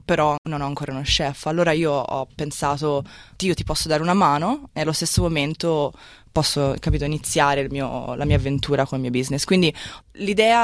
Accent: native